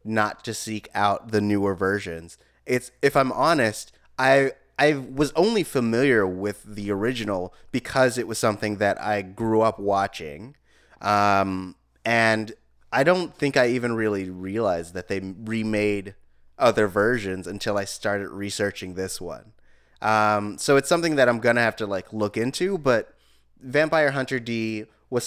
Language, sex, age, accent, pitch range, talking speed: English, male, 20-39, American, 100-120 Hz, 155 wpm